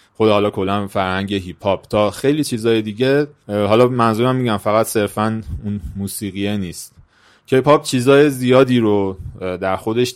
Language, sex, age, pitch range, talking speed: Persian, male, 30-49, 95-120 Hz, 135 wpm